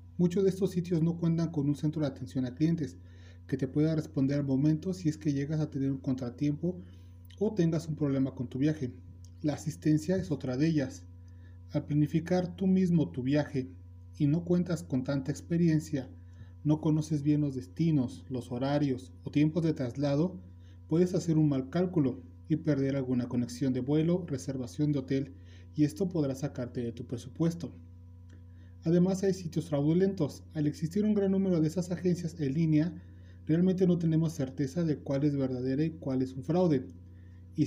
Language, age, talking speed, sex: Spanish, 30-49, 180 wpm, male